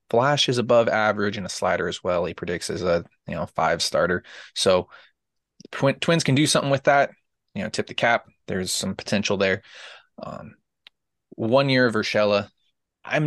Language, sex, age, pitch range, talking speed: English, male, 20-39, 100-135 Hz, 180 wpm